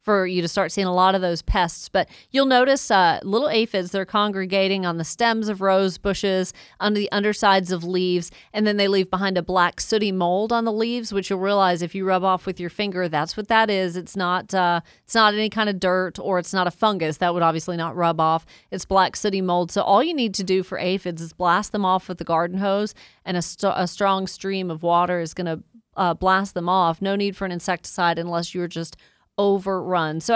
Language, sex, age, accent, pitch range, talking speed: English, female, 40-59, American, 180-210 Hz, 230 wpm